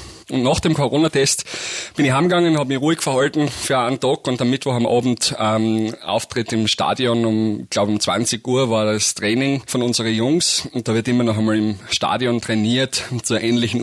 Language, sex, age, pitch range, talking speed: German, male, 30-49, 115-135 Hz, 195 wpm